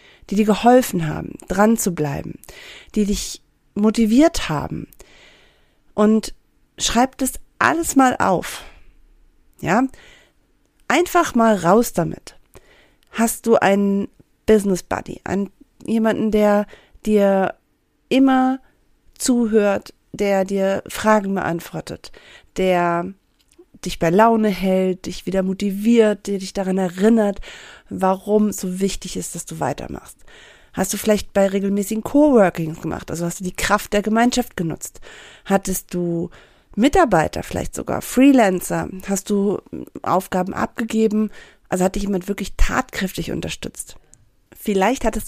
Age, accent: 40-59, German